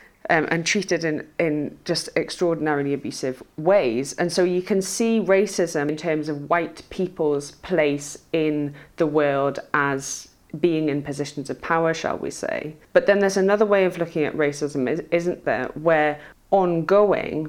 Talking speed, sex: 160 wpm, female